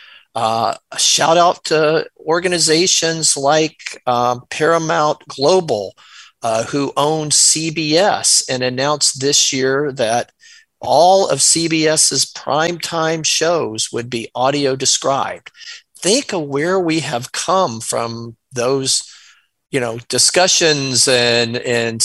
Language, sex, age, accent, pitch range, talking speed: English, male, 40-59, American, 120-155 Hz, 110 wpm